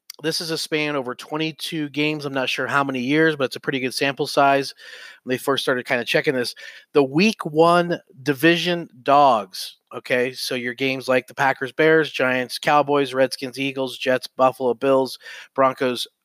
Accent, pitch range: American, 125-150 Hz